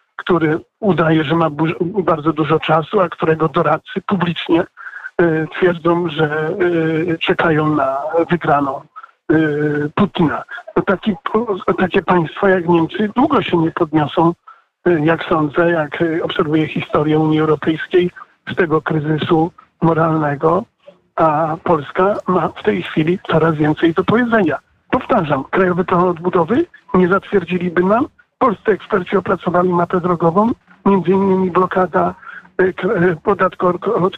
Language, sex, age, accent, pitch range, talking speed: Polish, male, 50-69, native, 165-190 Hz, 110 wpm